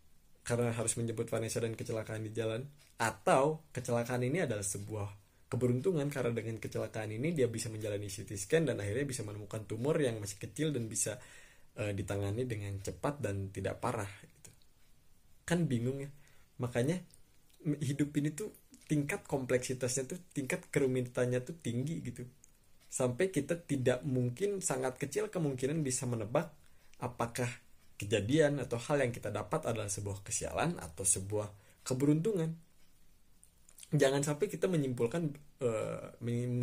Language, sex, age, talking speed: Indonesian, male, 20-39, 135 wpm